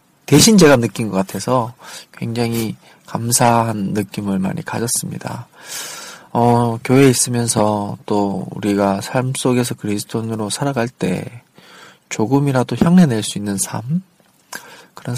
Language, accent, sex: Korean, native, male